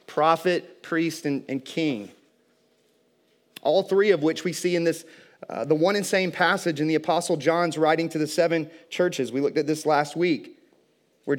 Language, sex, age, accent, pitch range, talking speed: English, male, 30-49, American, 155-185 Hz, 185 wpm